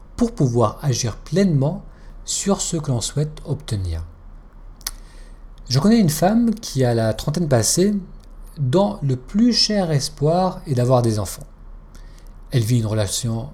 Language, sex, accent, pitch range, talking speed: French, male, French, 115-165 Hz, 140 wpm